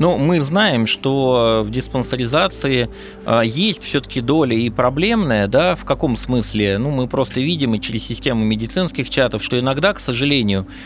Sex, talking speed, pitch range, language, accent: male, 165 wpm, 115-155 Hz, Russian, native